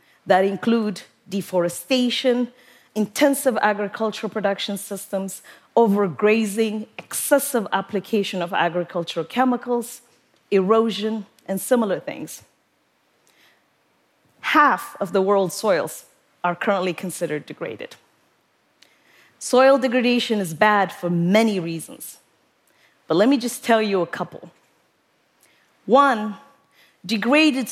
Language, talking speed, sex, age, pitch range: English, 95 wpm, female, 30-49, 195-255 Hz